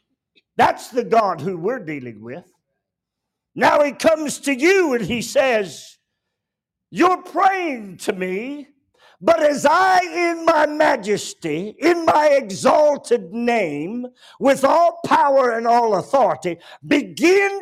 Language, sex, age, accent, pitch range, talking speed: English, male, 50-69, American, 215-330 Hz, 125 wpm